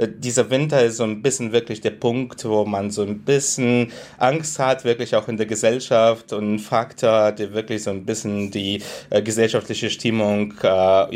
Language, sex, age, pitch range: German, male, 20-39, 105-120 Hz